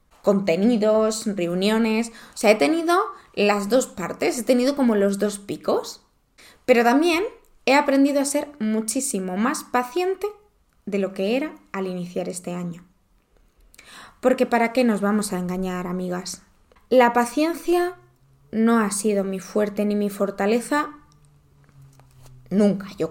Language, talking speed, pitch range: Spanish, 135 wpm, 205-255 Hz